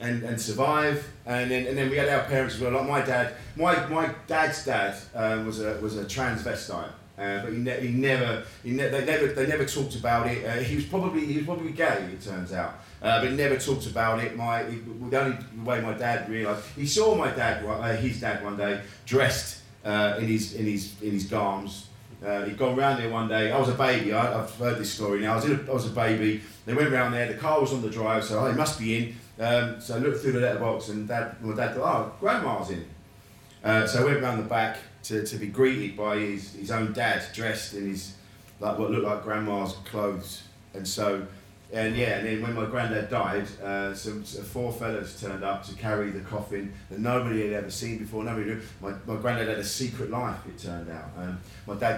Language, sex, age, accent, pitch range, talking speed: English, male, 40-59, British, 105-125 Hz, 240 wpm